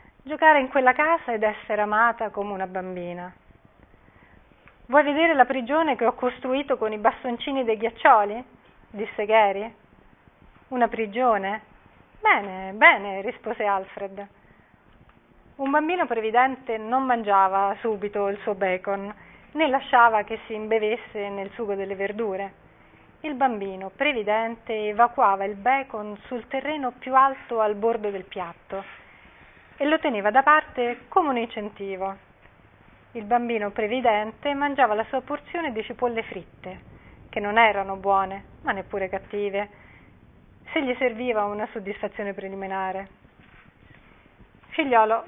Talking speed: 125 wpm